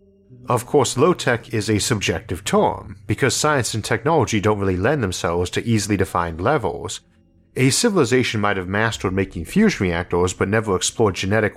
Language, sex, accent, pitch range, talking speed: English, male, American, 90-120 Hz, 160 wpm